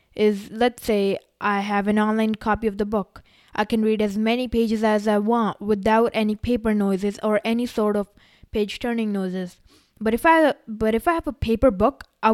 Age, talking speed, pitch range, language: 10-29, 205 wpm, 205-245 Hz, English